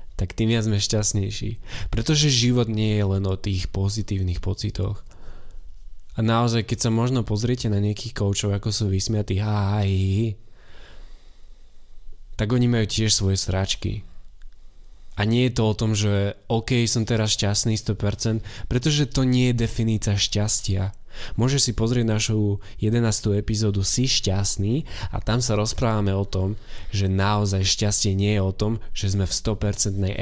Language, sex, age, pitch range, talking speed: Slovak, male, 20-39, 95-110 Hz, 155 wpm